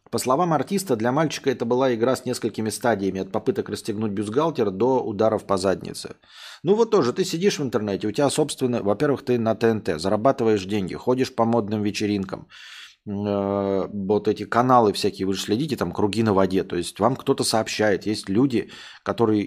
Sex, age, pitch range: male, 20-39, 105-130 Hz